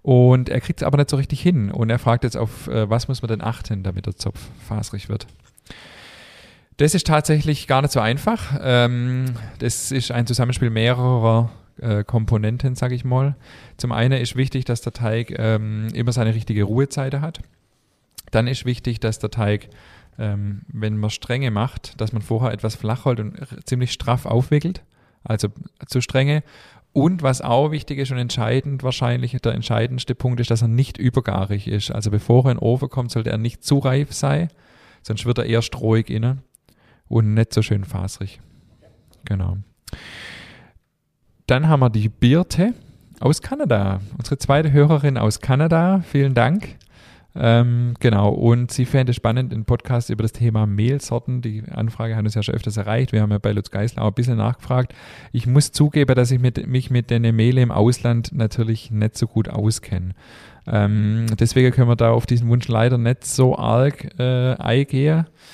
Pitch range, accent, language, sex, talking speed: 110-130 Hz, German, German, male, 180 wpm